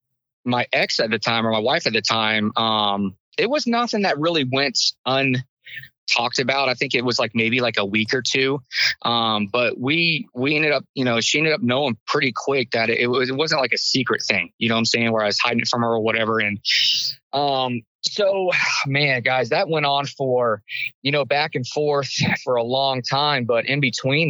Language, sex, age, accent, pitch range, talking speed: English, male, 20-39, American, 115-135 Hz, 220 wpm